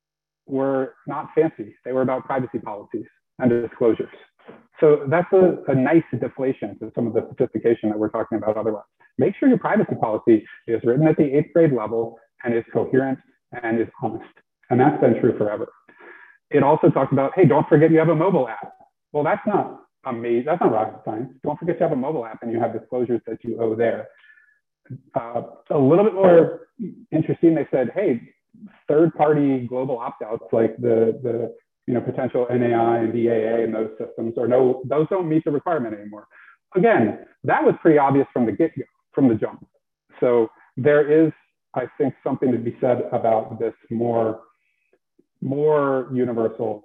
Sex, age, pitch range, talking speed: male, 30-49, 115-160 Hz, 180 wpm